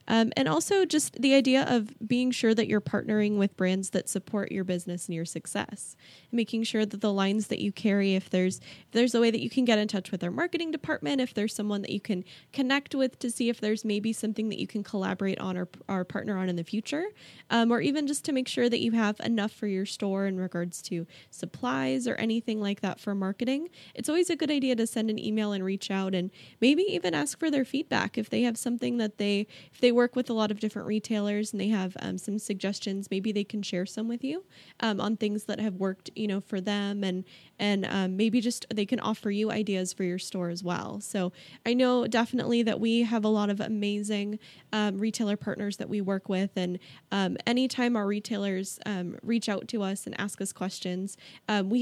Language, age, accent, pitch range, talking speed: English, 10-29, American, 195-235 Hz, 235 wpm